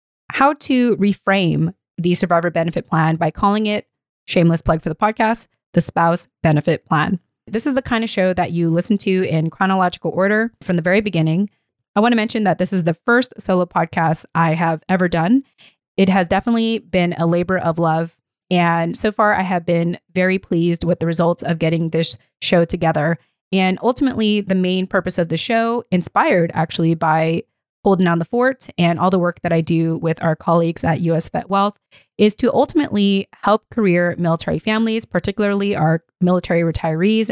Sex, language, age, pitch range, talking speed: female, English, 20-39, 165-205 Hz, 185 wpm